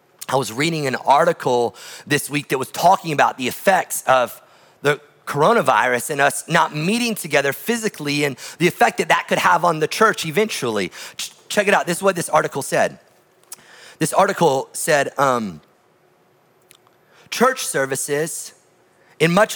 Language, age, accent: English, 30-49, American